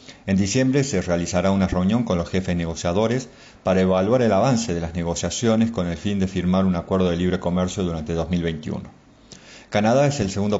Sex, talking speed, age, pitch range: male, 185 wpm, 40-59, 90-105 Hz